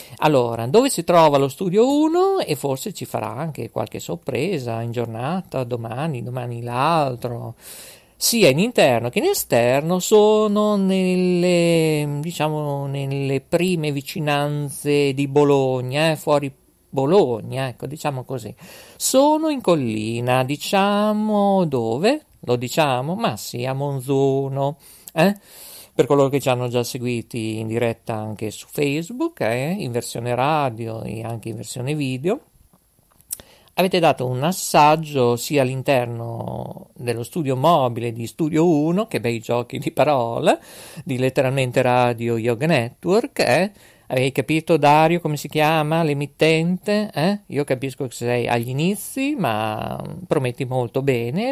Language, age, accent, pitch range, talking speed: Italian, 50-69, native, 125-165 Hz, 130 wpm